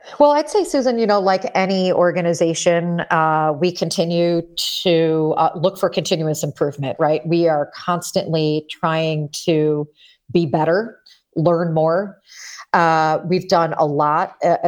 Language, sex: English, female